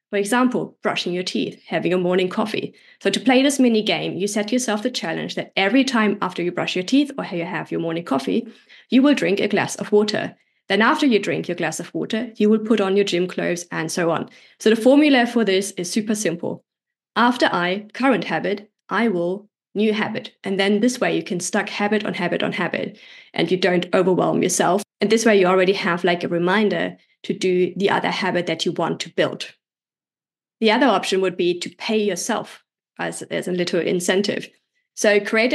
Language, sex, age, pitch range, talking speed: English, female, 20-39, 185-225 Hz, 210 wpm